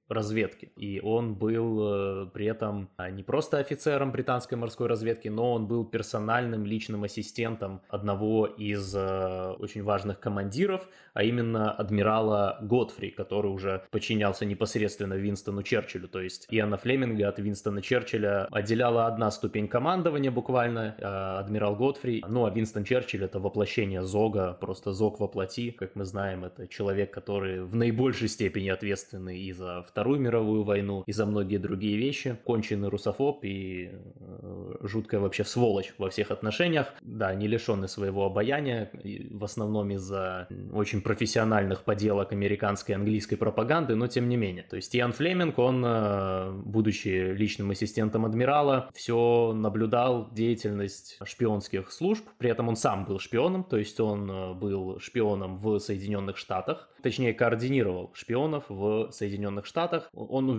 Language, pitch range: Russian, 100-115 Hz